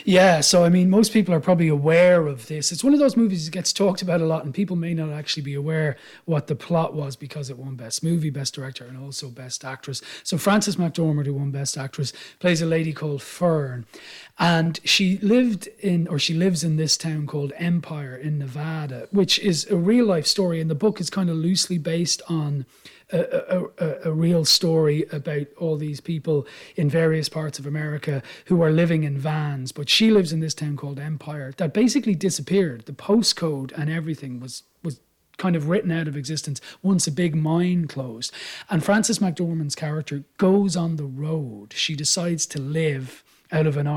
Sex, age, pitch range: male, 30-49, 145-180 Hz